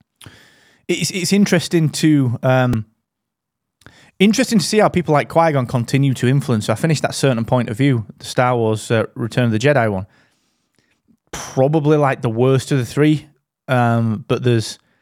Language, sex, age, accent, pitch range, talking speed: English, male, 20-39, British, 120-155 Hz, 170 wpm